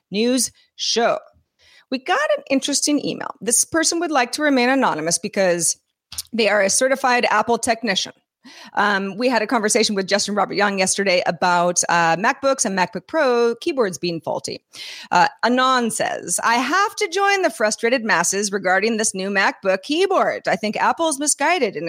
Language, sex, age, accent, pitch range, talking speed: English, female, 30-49, American, 200-275 Hz, 165 wpm